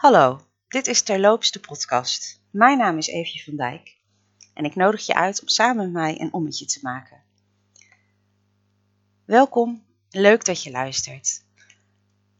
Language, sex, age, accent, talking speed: Dutch, female, 30-49, Dutch, 145 wpm